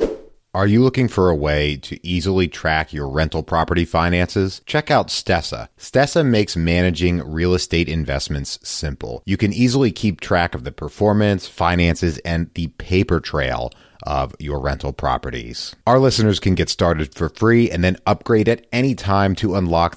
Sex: male